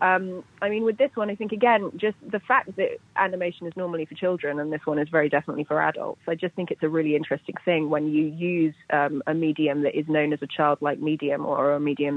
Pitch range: 150-170 Hz